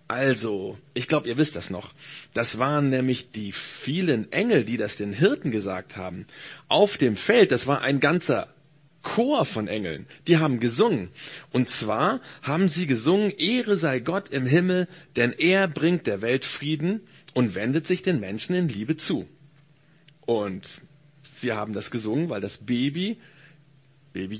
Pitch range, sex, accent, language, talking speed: 120-165 Hz, male, German, German, 160 wpm